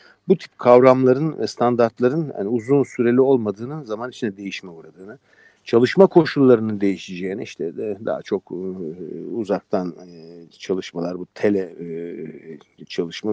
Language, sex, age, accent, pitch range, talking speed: Turkish, male, 50-69, native, 105-140 Hz, 115 wpm